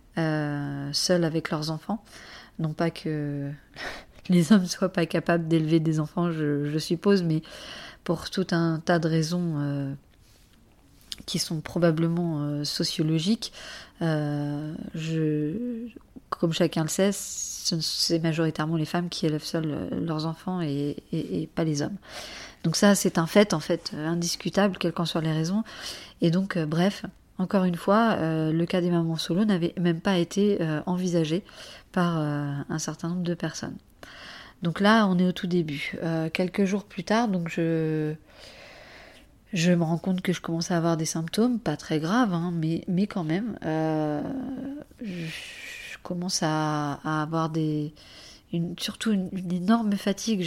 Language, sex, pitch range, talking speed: French, female, 160-190 Hz, 165 wpm